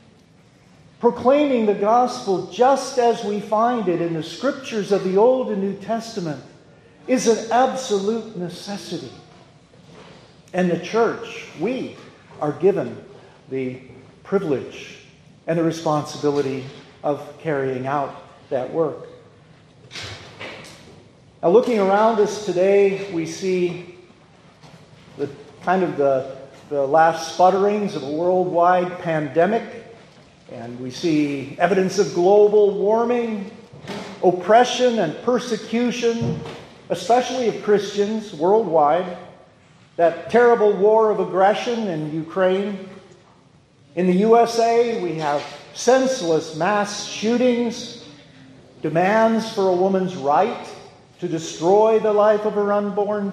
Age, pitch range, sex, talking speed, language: 50-69, 160-220 Hz, male, 110 wpm, English